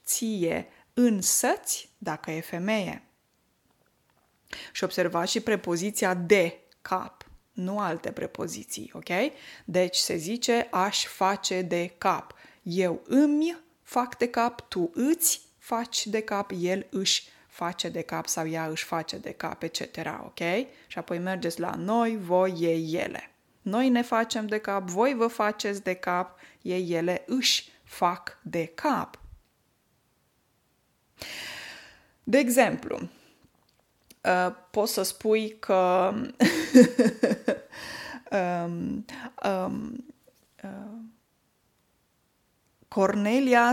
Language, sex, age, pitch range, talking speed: Romanian, female, 20-39, 180-245 Hz, 105 wpm